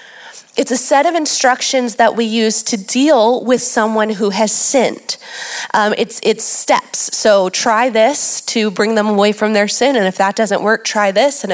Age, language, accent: 30-49, English, American